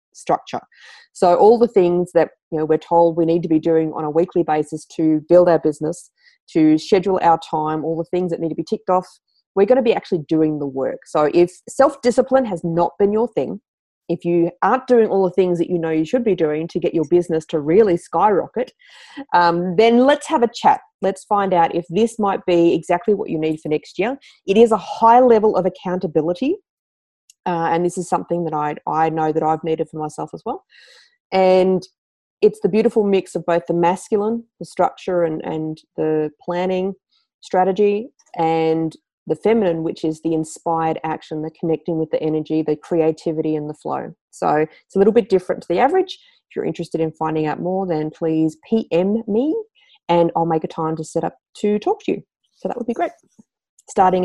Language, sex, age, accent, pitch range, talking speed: English, female, 30-49, Australian, 160-210 Hz, 205 wpm